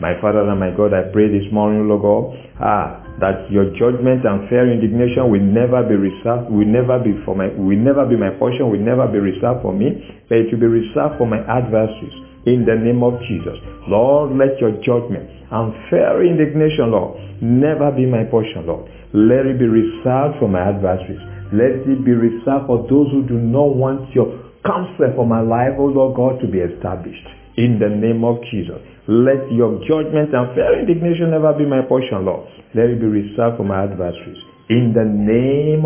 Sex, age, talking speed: male, 50-69, 195 wpm